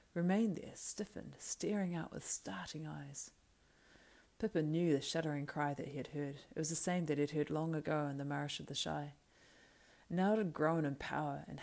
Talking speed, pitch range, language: 205 wpm, 145-170 Hz, English